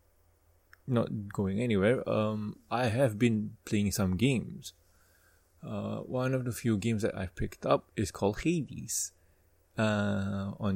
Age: 20-39